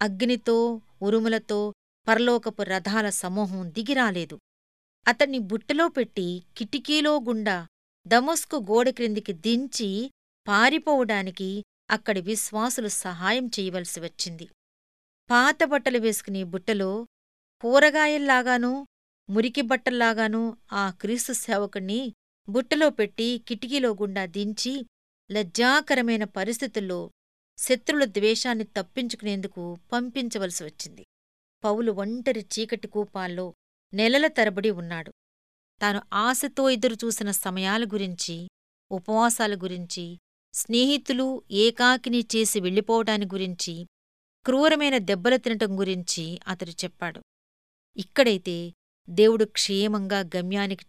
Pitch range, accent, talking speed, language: 190-240 Hz, native, 80 wpm, Telugu